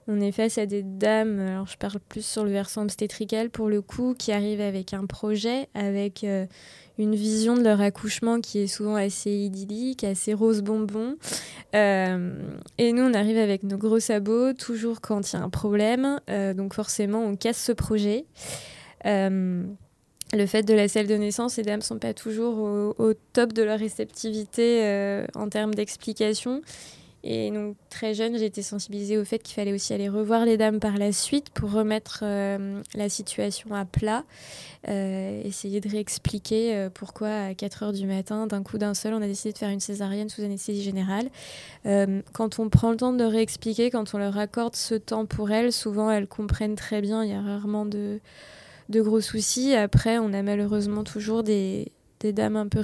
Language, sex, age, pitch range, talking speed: French, female, 20-39, 200-220 Hz, 195 wpm